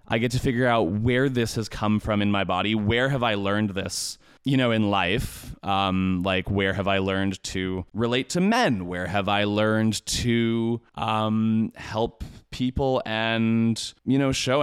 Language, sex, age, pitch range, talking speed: English, male, 20-39, 95-120 Hz, 180 wpm